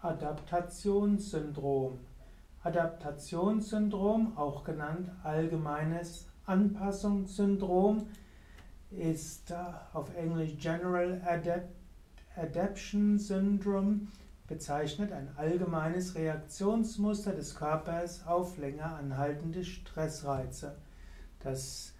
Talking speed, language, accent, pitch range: 65 wpm, German, German, 145-185 Hz